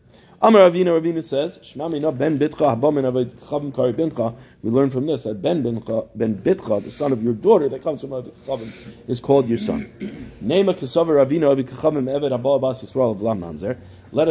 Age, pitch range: 40-59, 115-140 Hz